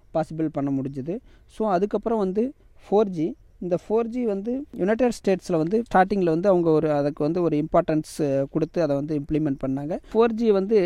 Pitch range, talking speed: 150-195 Hz, 155 wpm